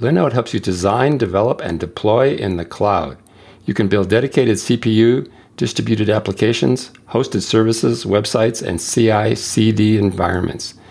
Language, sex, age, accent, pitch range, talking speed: English, male, 50-69, American, 100-115 Hz, 130 wpm